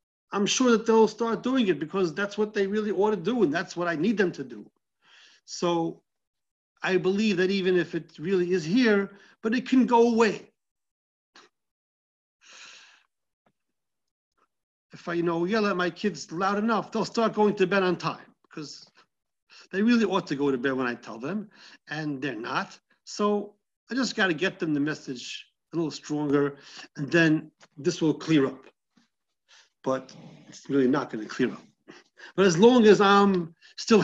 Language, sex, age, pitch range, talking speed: English, male, 50-69, 130-195 Hz, 175 wpm